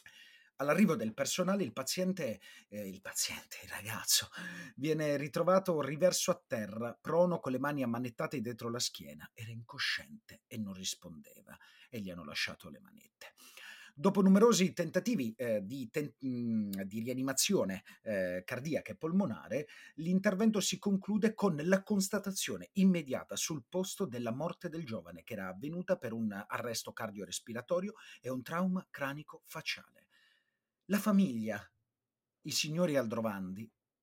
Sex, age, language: male, 30-49, Italian